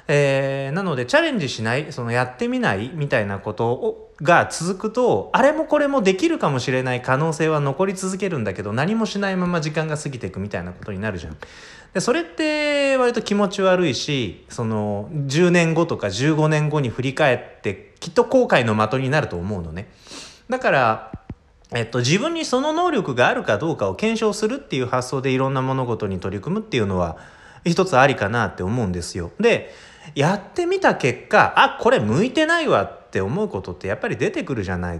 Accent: native